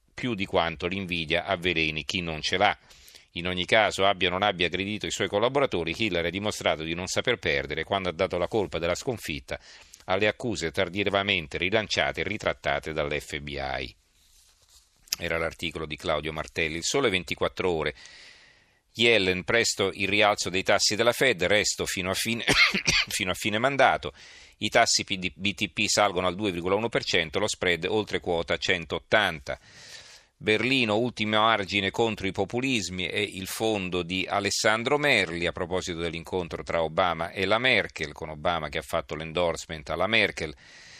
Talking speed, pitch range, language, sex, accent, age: 155 wpm, 85-105 Hz, Italian, male, native, 40-59